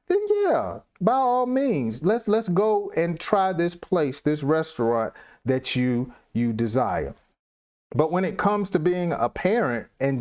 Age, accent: 40-59, American